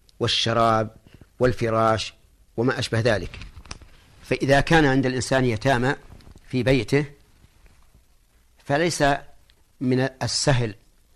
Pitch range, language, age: 90-135 Hz, Arabic, 50-69